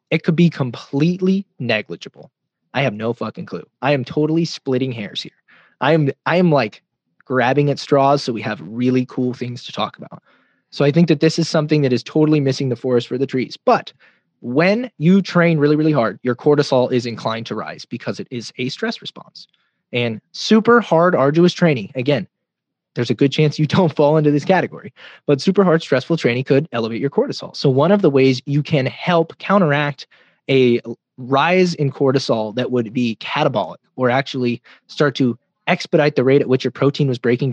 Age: 20-39